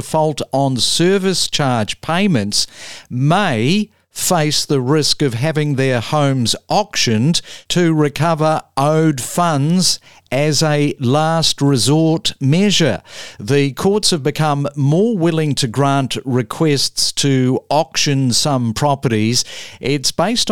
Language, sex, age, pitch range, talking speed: English, male, 50-69, 125-160 Hz, 110 wpm